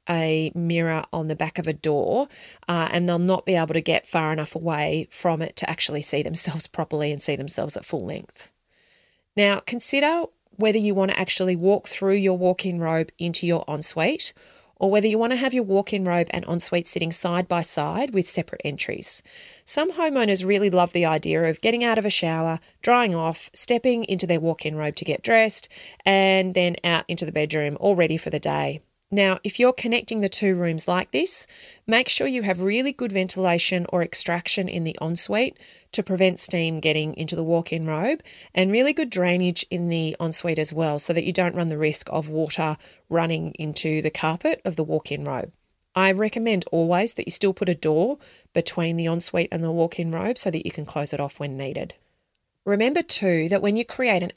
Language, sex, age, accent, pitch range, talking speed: English, female, 30-49, Australian, 160-205 Hz, 205 wpm